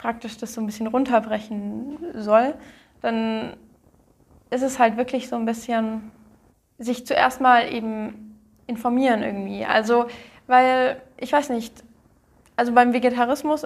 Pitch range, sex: 220-255 Hz, female